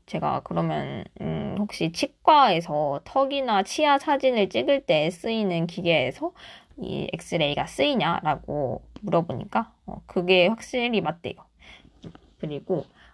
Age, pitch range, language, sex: 20-39, 170-245 Hz, Korean, female